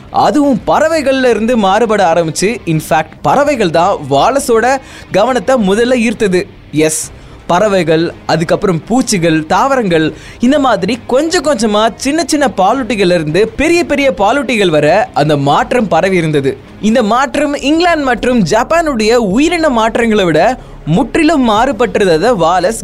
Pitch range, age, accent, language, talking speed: 185-270 Hz, 20-39, native, Tamil, 65 wpm